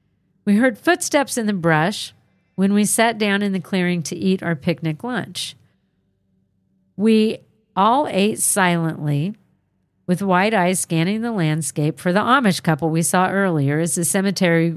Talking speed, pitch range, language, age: 155 wpm, 160-205 Hz, English, 50-69